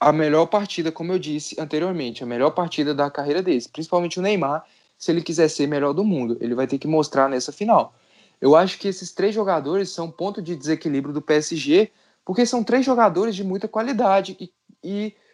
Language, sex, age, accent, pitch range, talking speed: Portuguese, male, 20-39, Brazilian, 145-195 Hz, 195 wpm